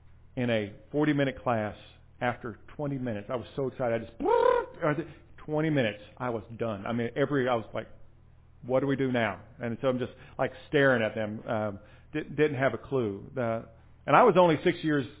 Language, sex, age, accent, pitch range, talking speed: English, male, 40-59, American, 110-140 Hz, 195 wpm